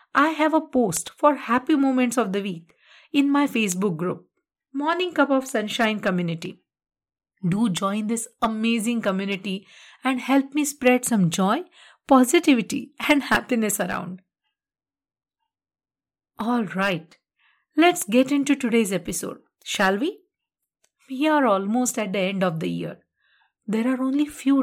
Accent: Indian